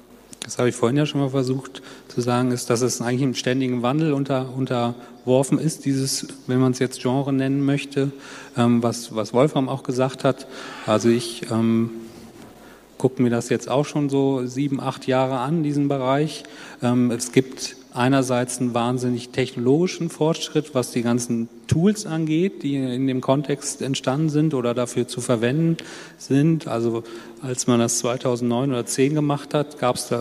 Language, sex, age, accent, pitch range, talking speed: German, male, 40-59, German, 120-140 Hz, 175 wpm